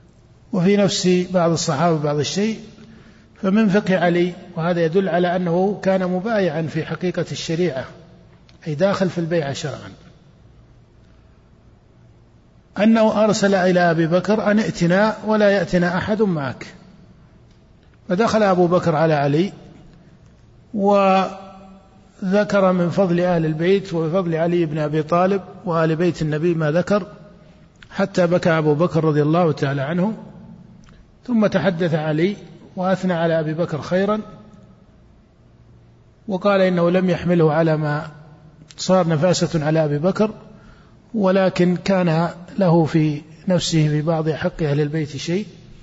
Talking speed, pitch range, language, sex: 120 wpm, 160-190 Hz, Arabic, male